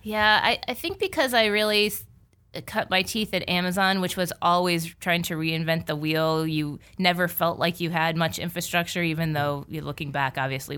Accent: American